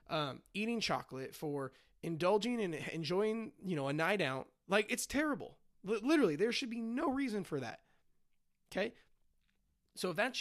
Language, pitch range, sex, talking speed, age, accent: English, 155-230 Hz, male, 155 wpm, 30-49, American